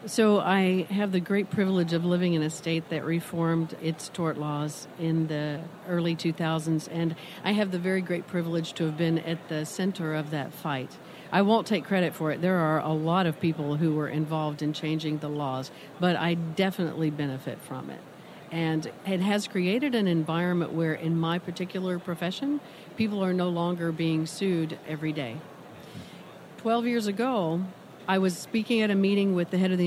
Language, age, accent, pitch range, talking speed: English, 50-69, American, 160-185 Hz, 190 wpm